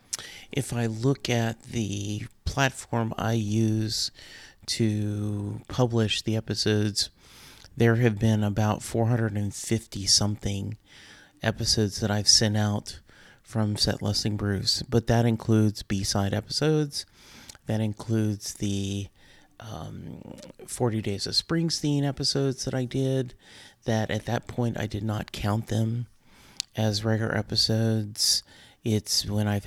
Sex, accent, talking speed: male, American, 115 wpm